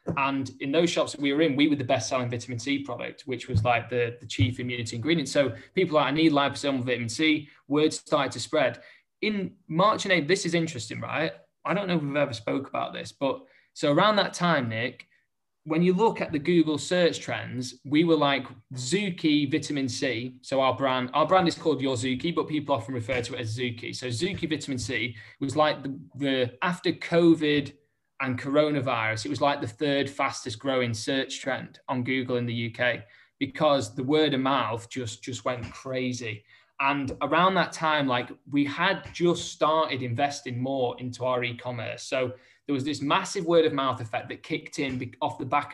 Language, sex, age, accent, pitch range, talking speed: English, male, 20-39, British, 125-155 Hz, 200 wpm